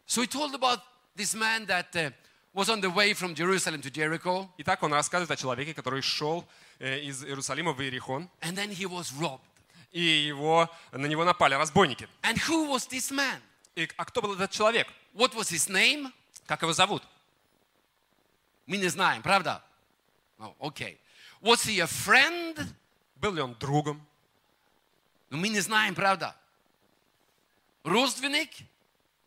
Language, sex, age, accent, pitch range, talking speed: Russian, male, 30-49, native, 150-215 Hz, 80 wpm